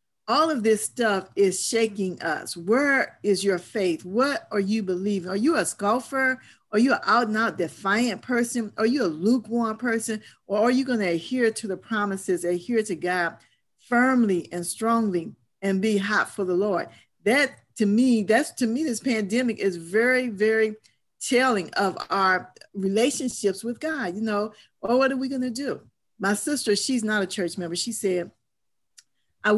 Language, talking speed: English, 180 wpm